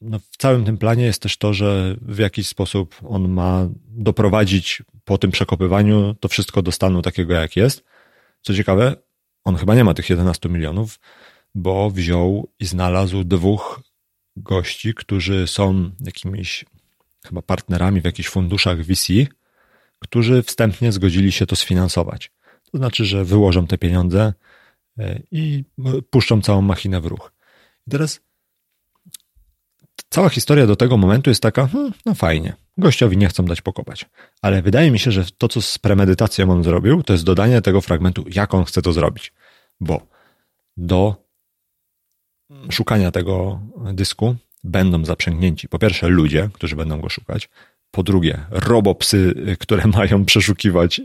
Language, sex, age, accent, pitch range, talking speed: Polish, male, 40-59, native, 90-110 Hz, 145 wpm